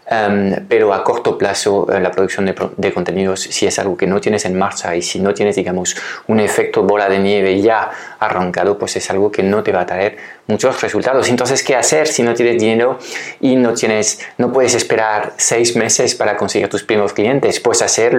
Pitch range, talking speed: 100-120 Hz, 210 wpm